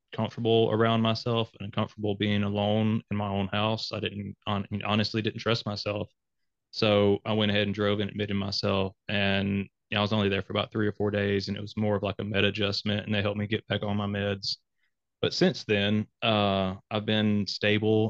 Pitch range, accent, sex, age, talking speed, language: 100-110 Hz, American, male, 20-39, 215 wpm, English